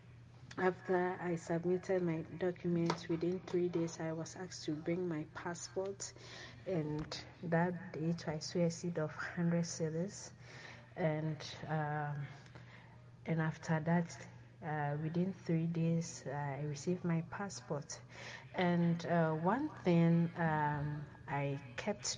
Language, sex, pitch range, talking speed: English, female, 150-175 Hz, 125 wpm